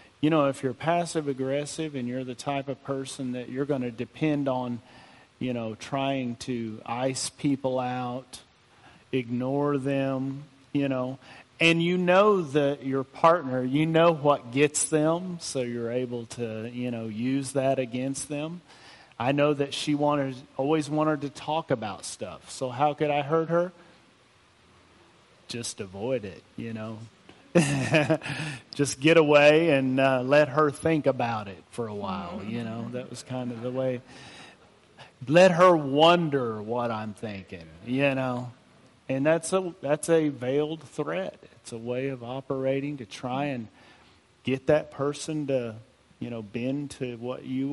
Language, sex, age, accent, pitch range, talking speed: English, male, 40-59, American, 125-150 Hz, 155 wpm